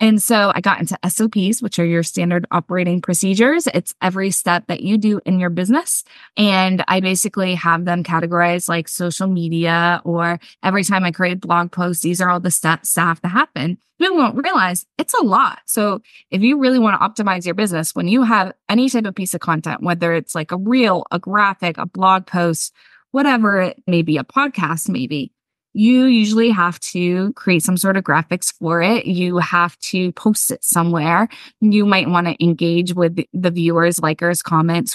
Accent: American